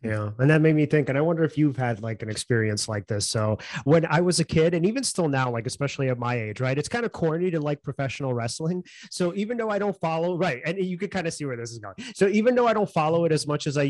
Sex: male